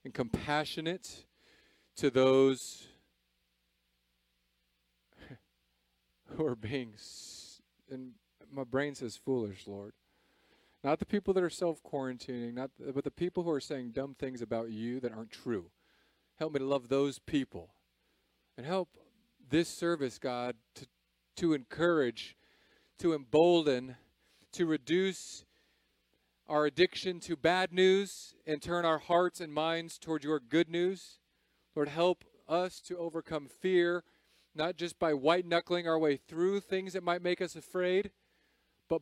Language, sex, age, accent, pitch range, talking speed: English, male, 40-59, American, 115-170 Hz, 135 wpm